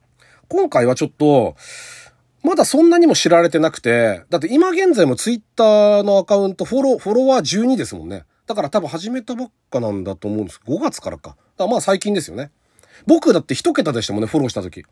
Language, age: Japanese, 40-59